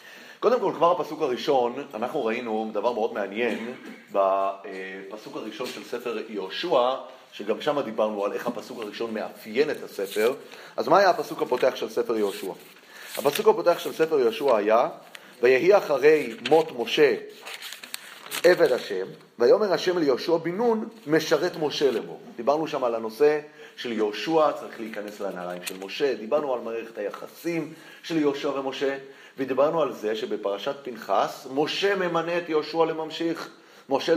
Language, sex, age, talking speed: Hebrew, male, 30-49, 145 wpm